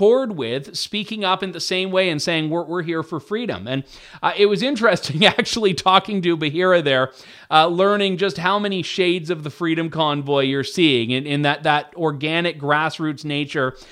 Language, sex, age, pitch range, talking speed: English, male, 30-49, 150-190 Hz, 185 wpm